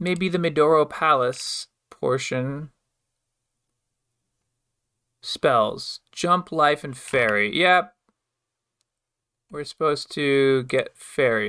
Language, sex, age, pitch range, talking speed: English, male, 20-39, 120-160 Hz, 85 wpm